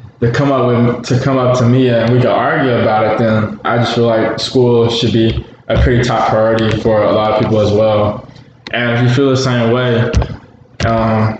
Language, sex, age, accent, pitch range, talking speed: English, male, 20-39, American, 115-125 Hz, 220 wpm